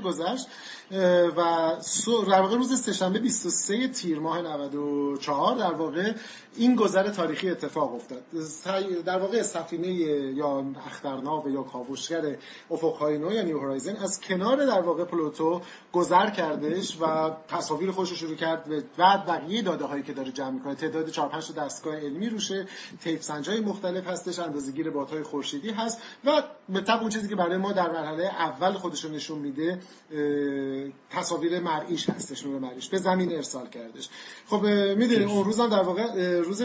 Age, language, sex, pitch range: 30-49, Persian, male, 155-190 Hz